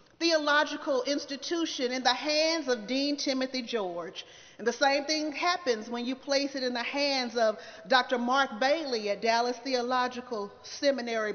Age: 40-59